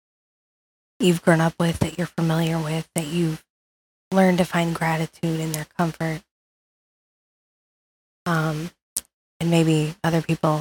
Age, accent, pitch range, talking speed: 20-39, American, 160-185 Hz, 125 wpm